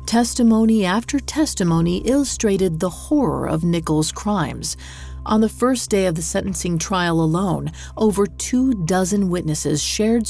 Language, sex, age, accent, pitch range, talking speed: English, female, 40-59, American, 155-220 Hz, 135 wpm